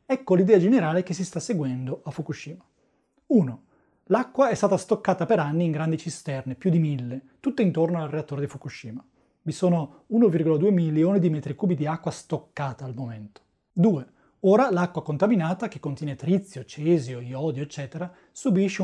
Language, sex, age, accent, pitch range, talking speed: Italian, male, 30-49, native, 145-190 Hz, 160 wpm